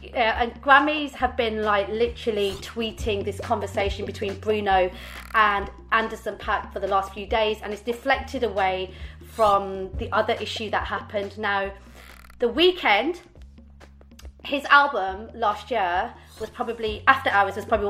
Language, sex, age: English, female, 30-49